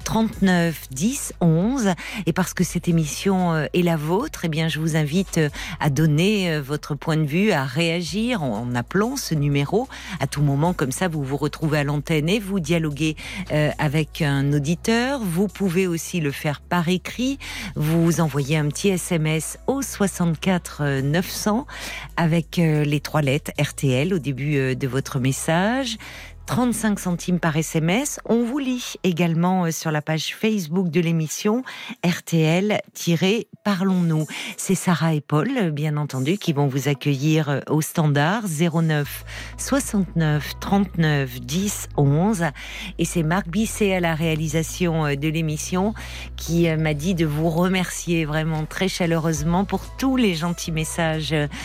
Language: French